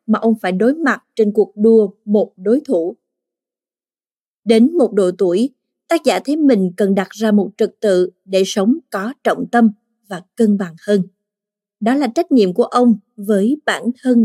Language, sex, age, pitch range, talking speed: Vietnamese, female, 20-39, 195-240 Hz, 180 wpm